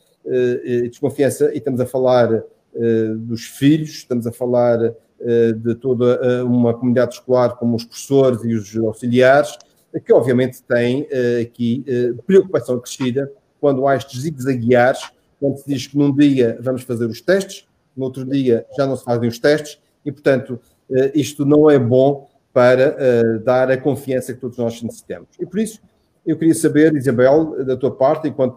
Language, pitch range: Portuguese, 120-140 Hz